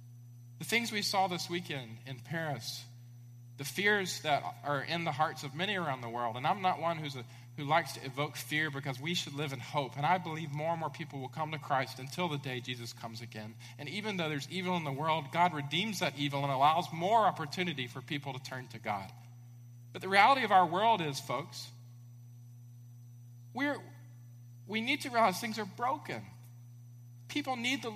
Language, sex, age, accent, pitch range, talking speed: English, male, 40-59, American, 120-185 Hz, 205 wpm